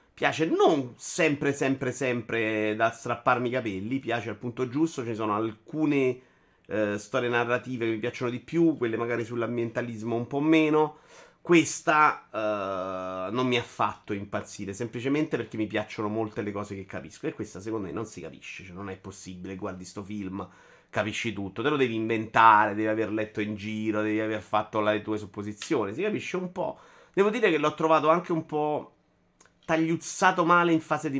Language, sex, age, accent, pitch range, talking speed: Italian, male, 30-49, native, 110-145 Hz, 180 wpm